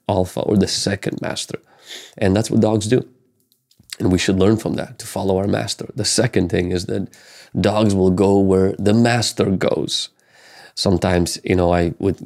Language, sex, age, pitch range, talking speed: English, male, 20-39, 90-105 Hz, 180 wpm